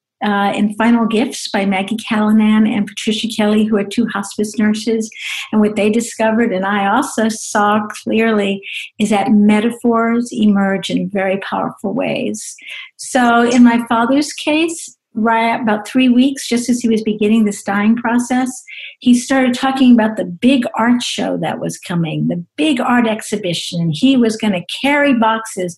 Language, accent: English, American